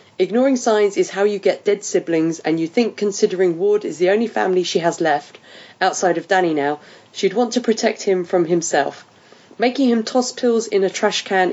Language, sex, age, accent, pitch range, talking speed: English, female, 30-49, British, 175-230 Hz, 205 wpm